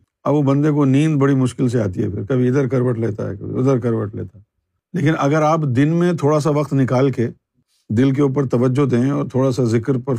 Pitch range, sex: 120-150 Hz, male